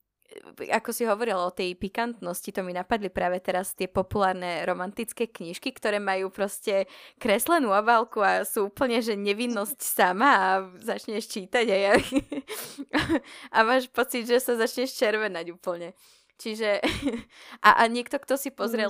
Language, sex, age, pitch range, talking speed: Slovak, female, 20-39, 185-235 Hz, 145 wpm